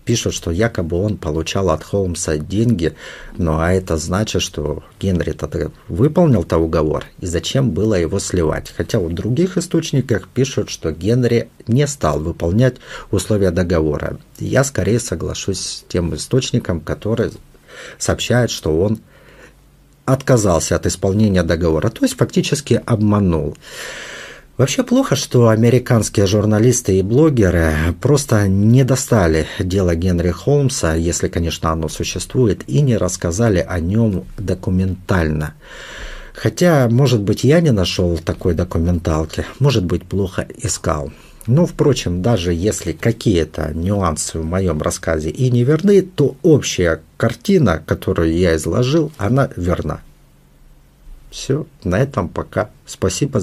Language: Russian